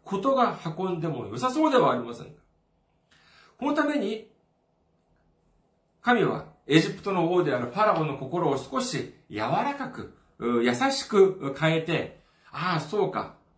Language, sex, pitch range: Japanese, male, 160-255 Hz